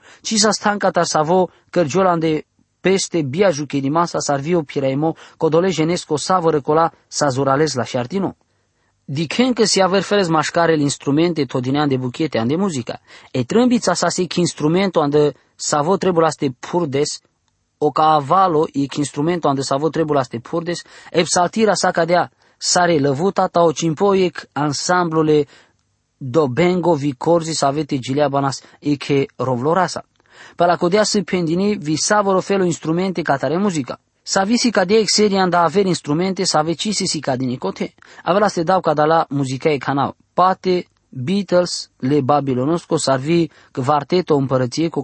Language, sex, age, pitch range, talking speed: English, male, 20-39, 140-180 Hz, 160 wpm